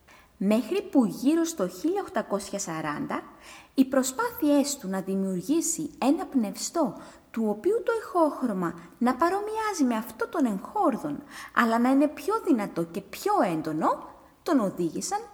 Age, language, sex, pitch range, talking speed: 20-39, Greek, female, 185-300 Hz, 125 wpm